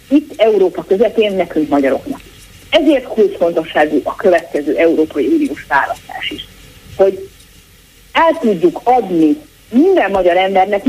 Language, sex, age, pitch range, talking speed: Hungarian, female, 40-59, 165-260 Hz, 115 wpm